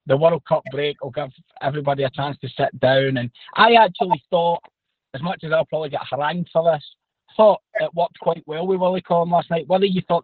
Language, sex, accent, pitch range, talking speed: English, male, British, 140-195 Hz, 225 wpm